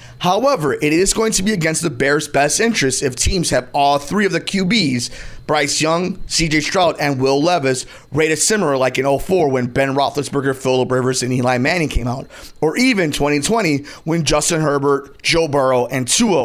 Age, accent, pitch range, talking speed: 30-49, American, 135-175 Hz, 185 wpm